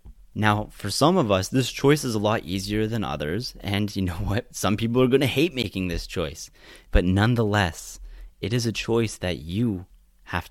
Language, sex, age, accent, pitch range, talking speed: English, male, 30-49, American, 95-115 Hz, 200 wpm